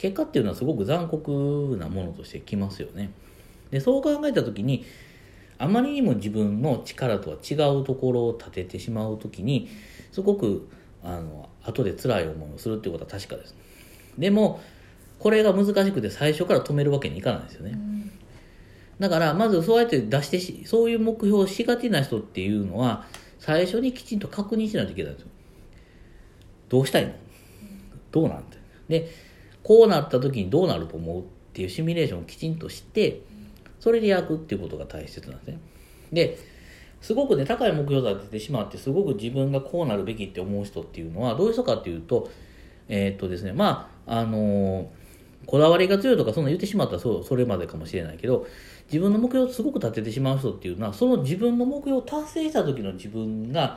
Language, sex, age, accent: Japanese, male, 40-59, native